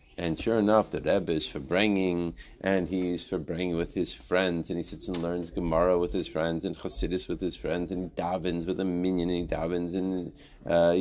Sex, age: male, 40-59